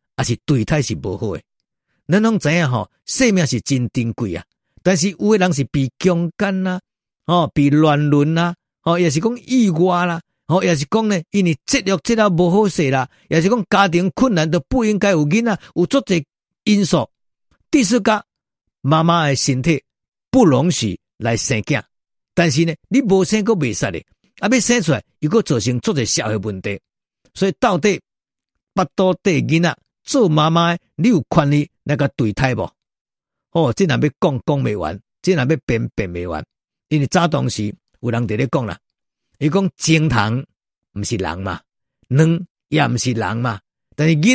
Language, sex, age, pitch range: Chinese, male, 50-69, 135-195 Hz